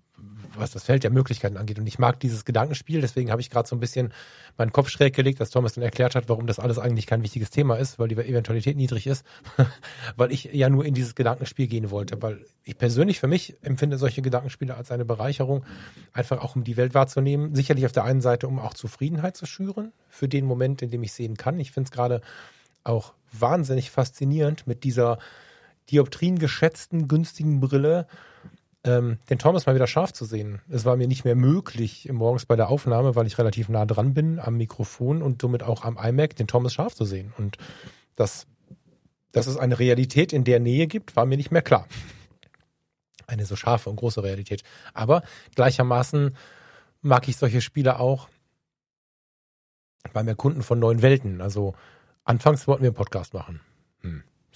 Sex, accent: male, German